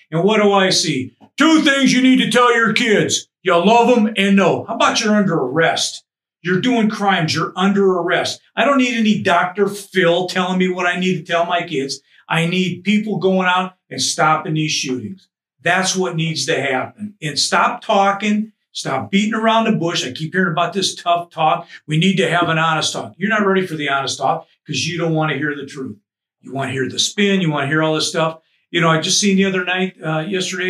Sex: male